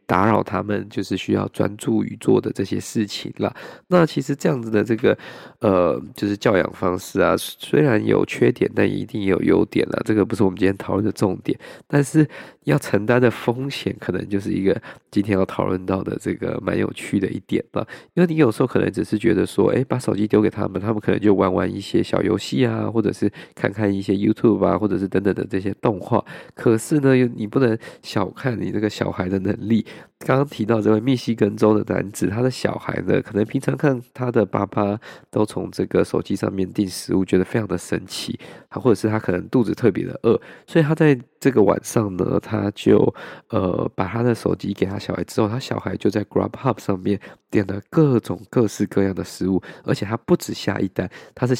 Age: 20-39